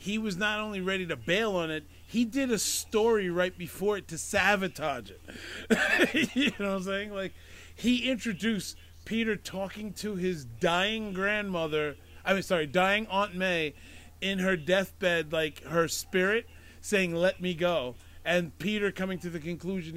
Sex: male